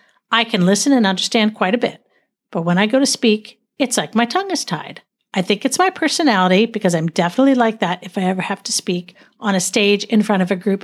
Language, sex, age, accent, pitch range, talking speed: English, female, 50-69, American, 185-245 Hz, 245 wpm